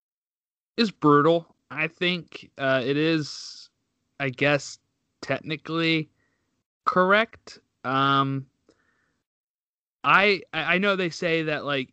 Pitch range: 125-160 Hz